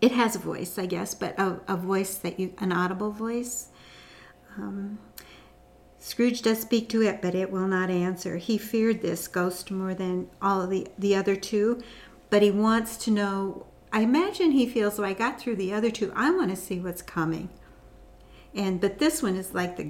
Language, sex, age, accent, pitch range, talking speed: English, female, 60-79, American, 185-220 Hz, 200 wpm